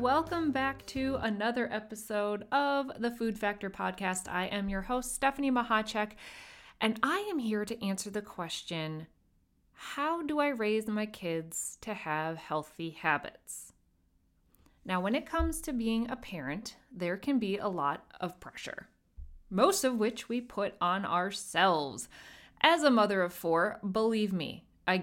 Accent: American